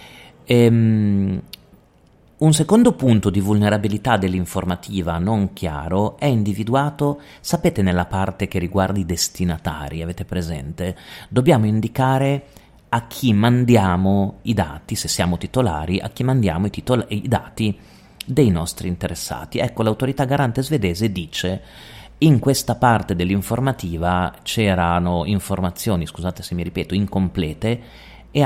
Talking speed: 115 wpm